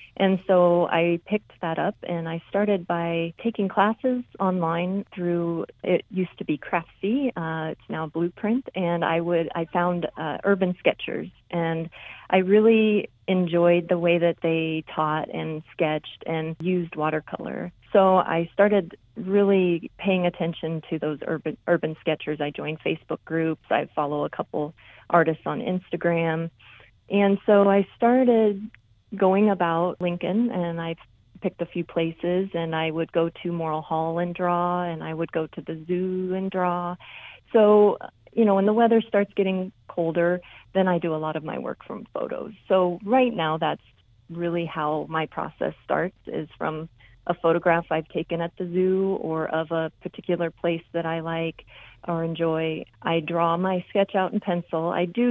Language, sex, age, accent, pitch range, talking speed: English, female, 30-49, American, 160-190 Hz, 165 wpm